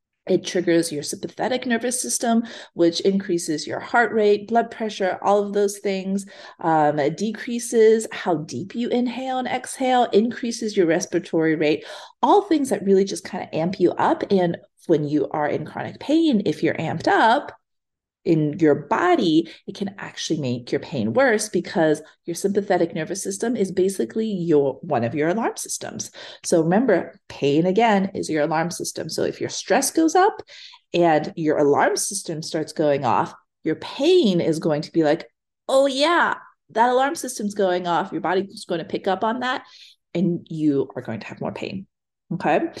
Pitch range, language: 165-230 Hz, English